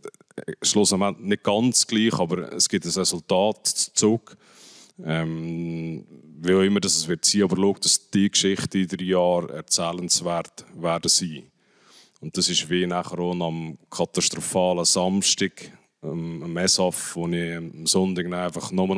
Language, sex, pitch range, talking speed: German, male, 85-95 Hz, 140 wpm